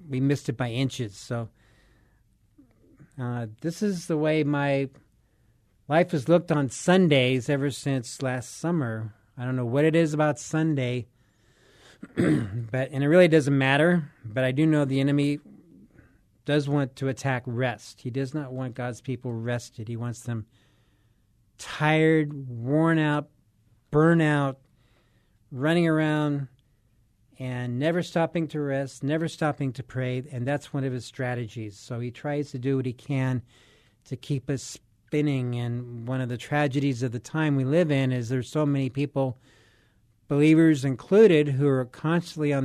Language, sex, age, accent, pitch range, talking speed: English, male, 40-59, American, 120-150 Hz, 155 wpm